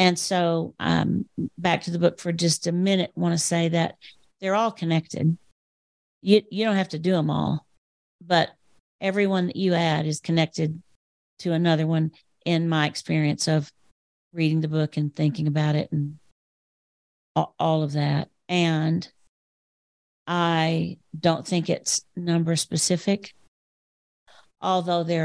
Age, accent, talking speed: 50-69, American, 145 wpm